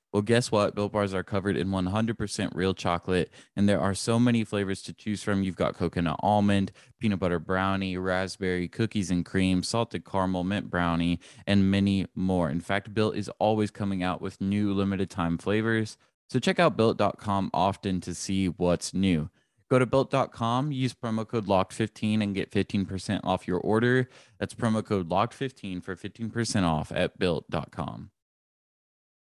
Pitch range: 90-105 Hz